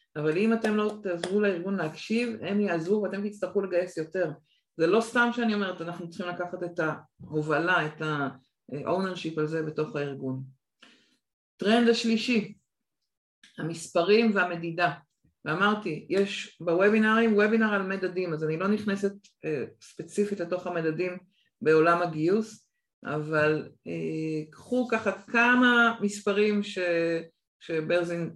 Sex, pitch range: female, 170-210 Hz